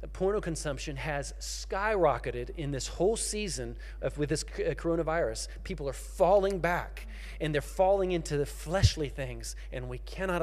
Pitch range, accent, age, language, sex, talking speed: 140-170 Hz, American, 30-49, German, male, 150 wpm